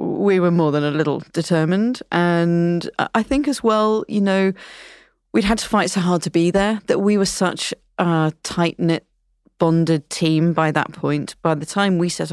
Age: 30-49